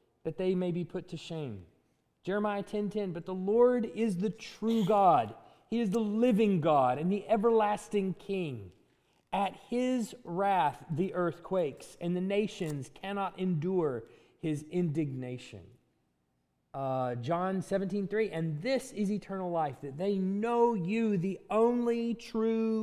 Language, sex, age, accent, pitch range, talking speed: English, male, 30-49, American, 155-215 Hz, 140 wpm